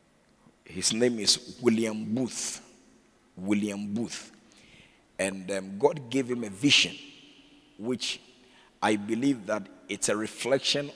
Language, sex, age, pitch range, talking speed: English, male, 50-69, 100-130 Hz, 115 wpm